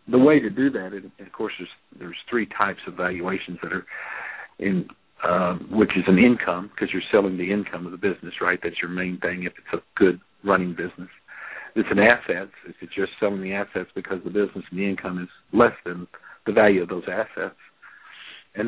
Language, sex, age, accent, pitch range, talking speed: English, male, 50-69, American, 90-100 Hz, 205 wpm